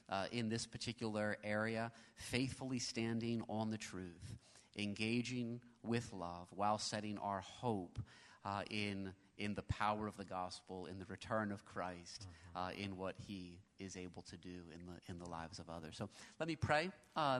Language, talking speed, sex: English, 170 wpm, male